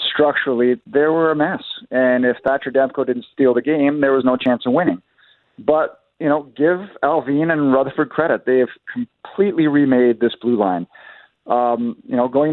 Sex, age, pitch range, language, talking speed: male, 40-59, 120-145 Hz, English, 180 wpm